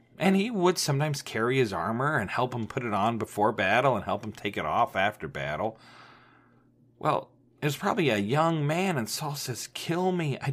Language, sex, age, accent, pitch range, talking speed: English, male, 40-59, American, 120-175 Hz, 205 wpm